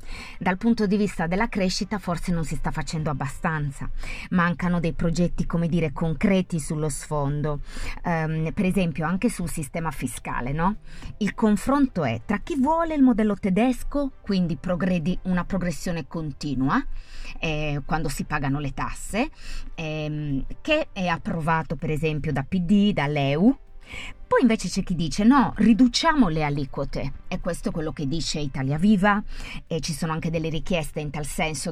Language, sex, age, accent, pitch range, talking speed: Italian, female, 30-49, native, 145-185 Hz, 155 wpm